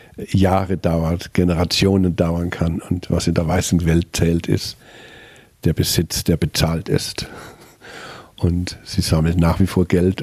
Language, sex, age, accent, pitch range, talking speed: German, male, 50-69, German, 90-105 Hz, 145 wpm